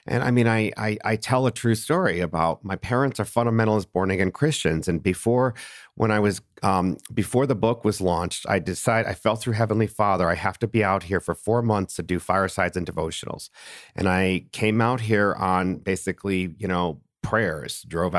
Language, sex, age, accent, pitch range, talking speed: English, male, 50-69, American, 95-120 Hz, 200 wpm